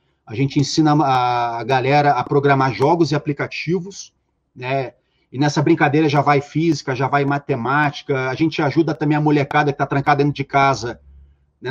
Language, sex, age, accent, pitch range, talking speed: Portuguese, male, 30-49, Brazilian, 135-155 Hz, 170 wpm